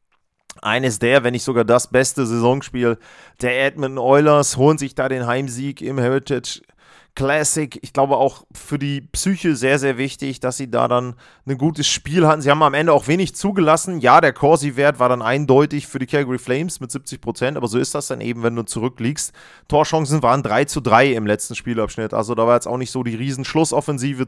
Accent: German